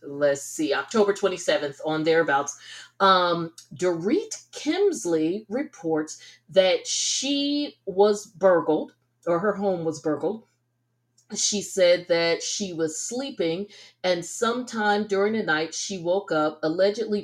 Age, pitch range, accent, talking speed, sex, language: 40-59, 145-175 Hz, American, 120 wpm, female, English